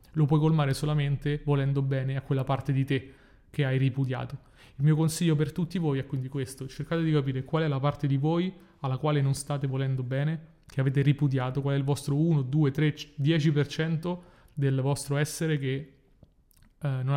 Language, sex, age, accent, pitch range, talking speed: Italian, male, 30-49, native, 135-150 Hz, 190 wpm